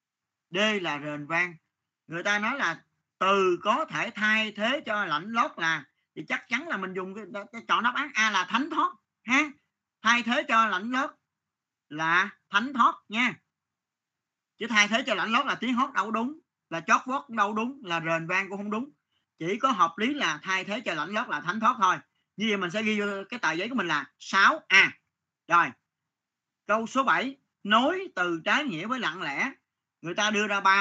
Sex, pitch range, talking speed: male, 165-225 Hz, 205 wpm